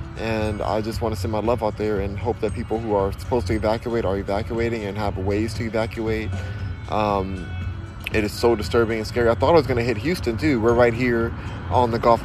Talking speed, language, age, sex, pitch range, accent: 235 wpm, English, 20-39, male, 100-120 Hz, American